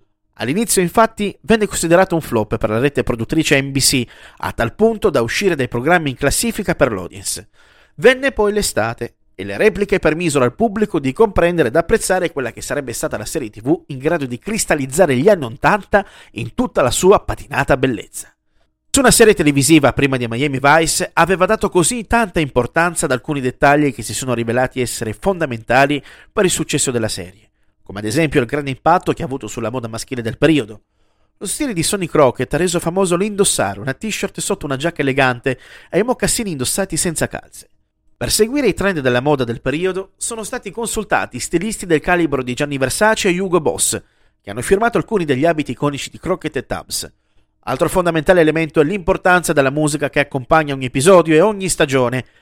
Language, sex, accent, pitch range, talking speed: Italian, male, native, 130-190 Hz, 185 wpm